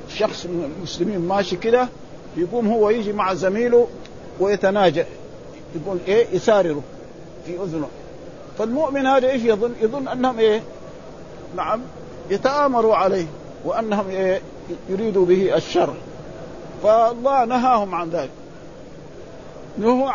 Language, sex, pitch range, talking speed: Arabic, male, 180-230 Hz, 105 wpm